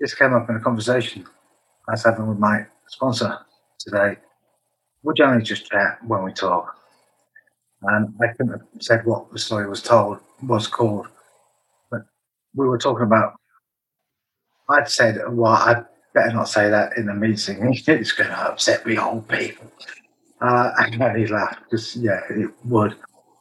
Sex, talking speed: male, 165 wpm